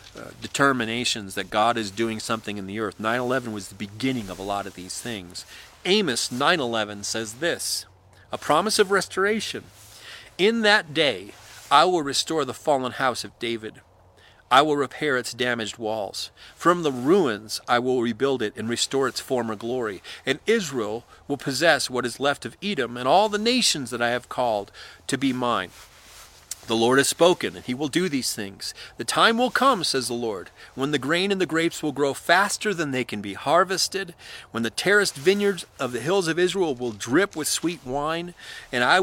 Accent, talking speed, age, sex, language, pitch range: American, 190 wpm, 40-59, male, English, 110-170 Hz